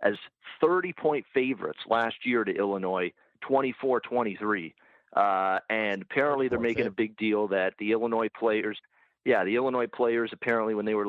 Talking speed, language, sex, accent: 145 wpm, English, male, American